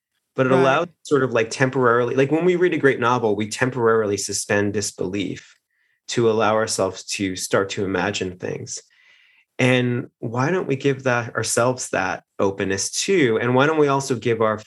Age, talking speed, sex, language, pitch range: 30-49, 175 wpm, male, English, 105-135 Hz